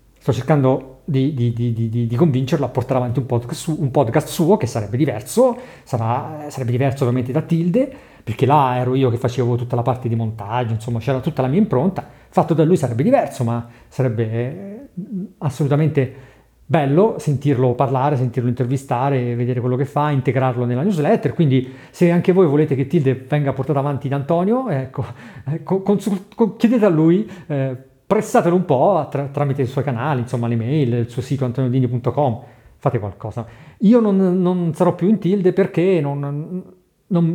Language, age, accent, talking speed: Italian, 40-59, native, 175 wpm